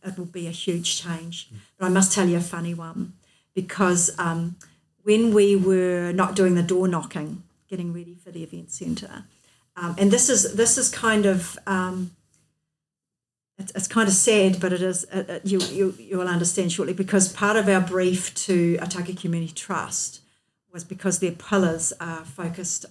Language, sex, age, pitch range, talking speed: English, female, 50-69, 170-190 Hz, 185 wpm